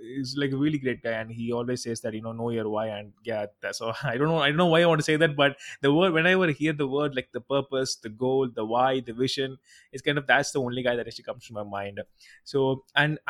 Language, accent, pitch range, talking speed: English, Indian, 120-155 Hz, 290 wpm